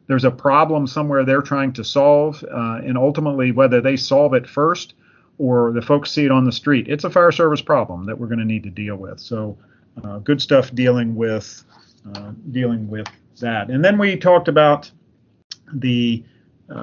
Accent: American